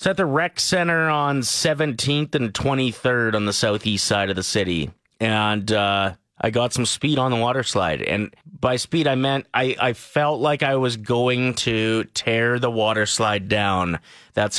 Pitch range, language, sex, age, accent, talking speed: 105-135 Hz, English, male, 30-49, American, 185 wpm